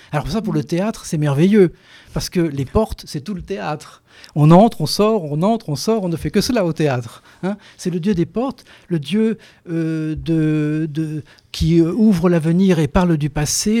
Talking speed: 205 wpm